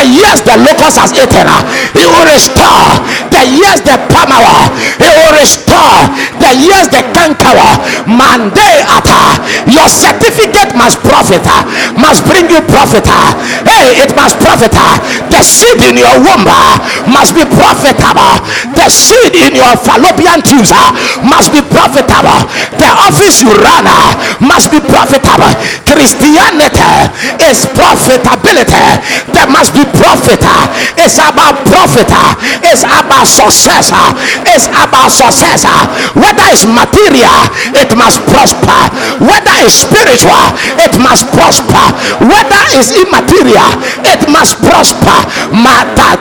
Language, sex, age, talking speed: English, male, 50-69, 120 wpm